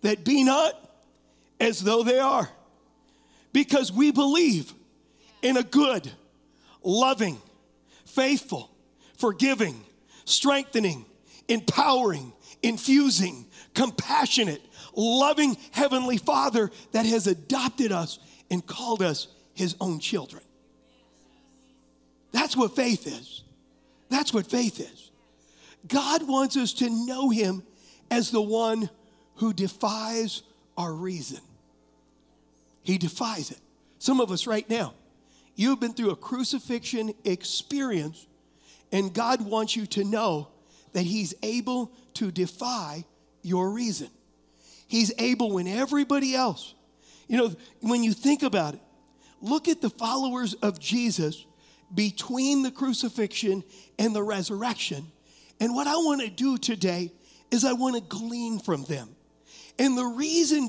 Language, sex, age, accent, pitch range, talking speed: English, male, 40-59, American, 195-265 Hz, 120 wpm